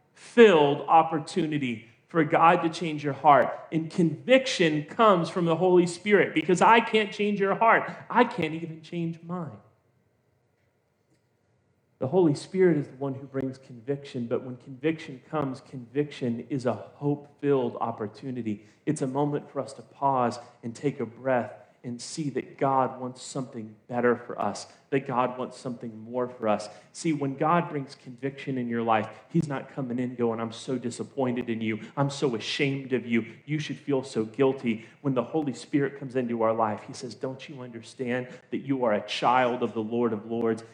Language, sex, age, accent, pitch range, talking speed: English, male, 40-59, American, 120-160 Hz, 180 wpm